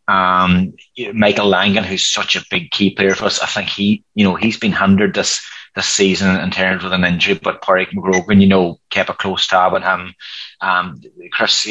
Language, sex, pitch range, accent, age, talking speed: English, male, 95-105 Hz, Irish, 20-39, 205 wpm